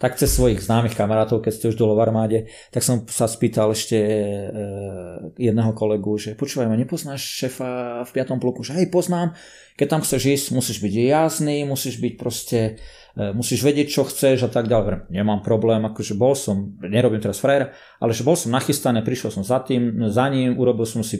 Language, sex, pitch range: Slovak, male, 110-135 Hz